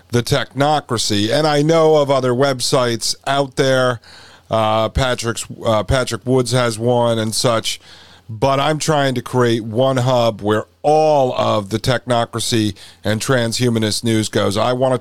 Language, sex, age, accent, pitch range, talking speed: English, male, 40-59, American, 110-130 Hz, 150 wpm